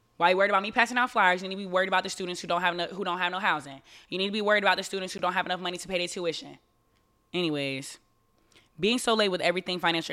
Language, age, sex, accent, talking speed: English, 20-39, female, American, 295 wpm